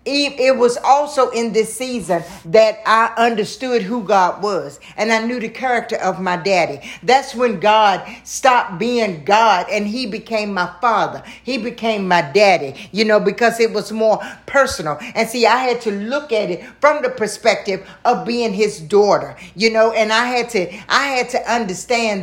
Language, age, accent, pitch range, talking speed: English, 50-69, American, 210-255 Hz, 180 wpm